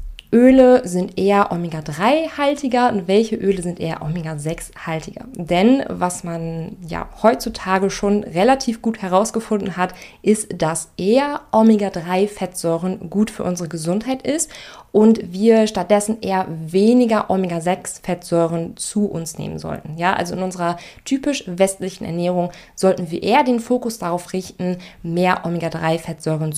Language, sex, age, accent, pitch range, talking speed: German, female, 20-39, German, 170-215 Hz, 125 wpm